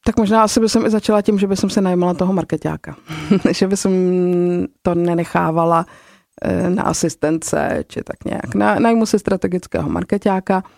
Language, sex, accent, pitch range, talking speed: Czech, female, native, 165-210 Hz, 150 wpm